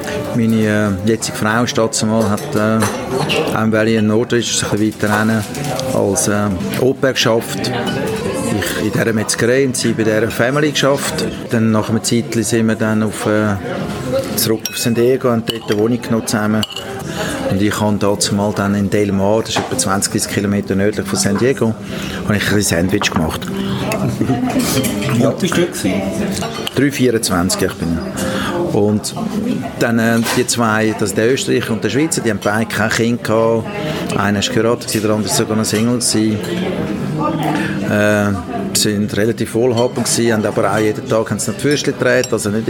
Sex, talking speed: male, 155 wpm